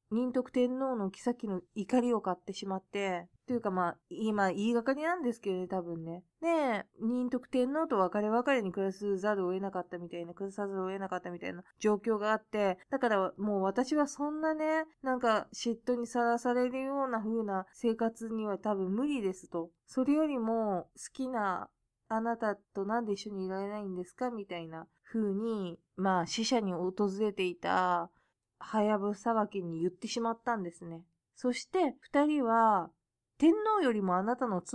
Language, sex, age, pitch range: Japanese, female, 20-39, 185-245 Hz